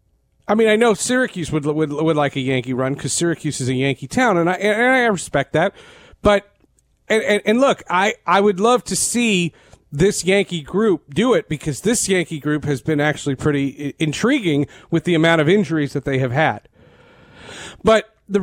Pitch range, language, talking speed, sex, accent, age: 155-220 Hz, English, 195 wpm, male, American, 40-59